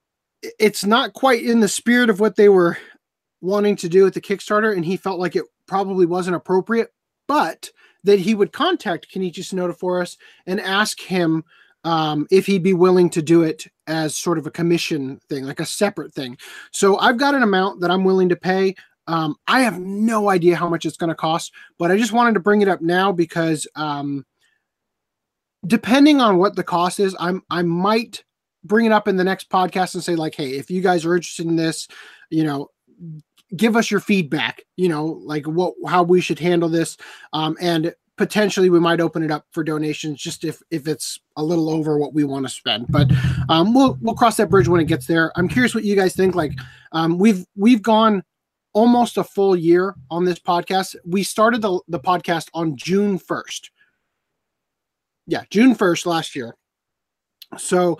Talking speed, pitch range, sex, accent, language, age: 200 wpm, 165-200 Hz, male, American, English, 30-49